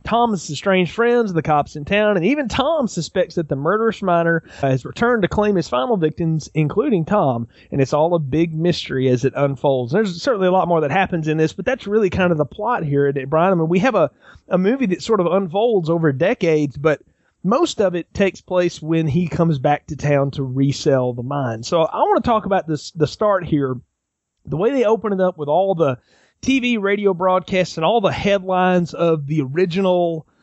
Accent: American